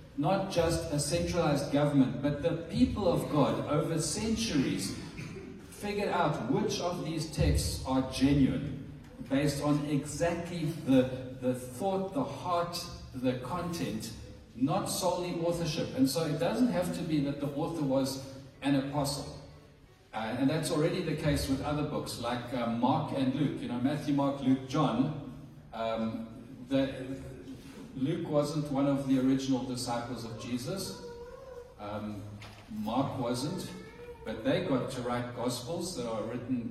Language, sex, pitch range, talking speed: English, male, 130-160 Hz, 145 wpm